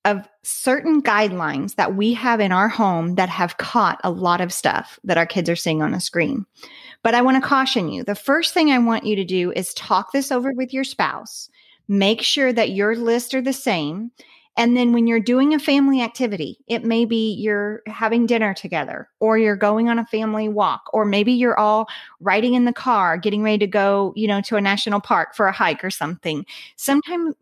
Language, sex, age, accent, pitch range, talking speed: English, female, 40-59, American, 200-245 Hz, 215 wpm